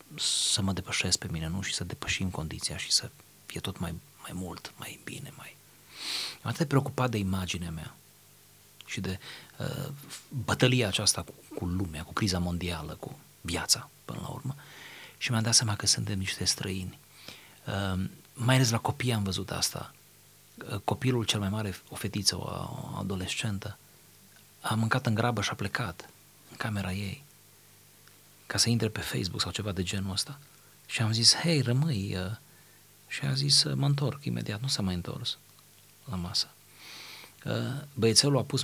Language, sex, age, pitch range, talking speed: Romanian, male, 30-49, 95-130 Hz, 170 wpm